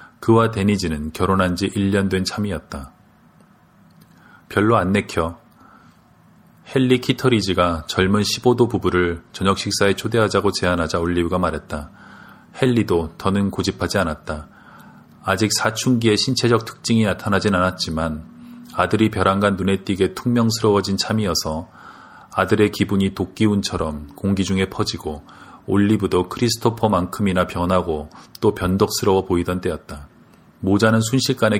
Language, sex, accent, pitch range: Korean, male, native, 90-110 Hz